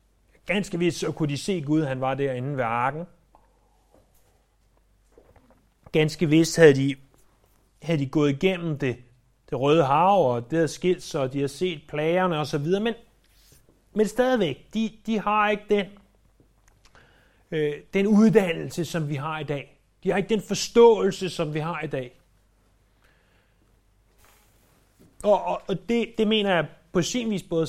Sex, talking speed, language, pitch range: male, 155 wpm, Danish, 120-190 Hz